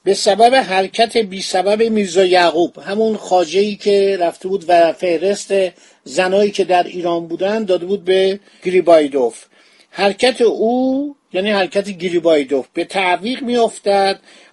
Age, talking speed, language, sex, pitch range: 50-69, 130 wpm, Persian, male, 175-205 Hz